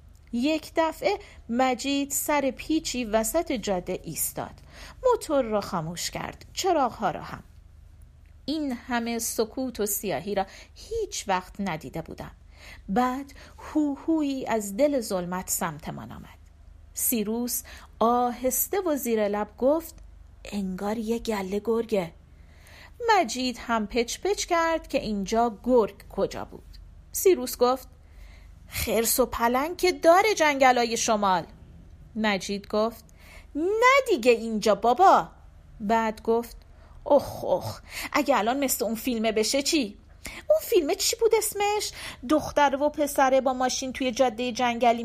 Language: Persian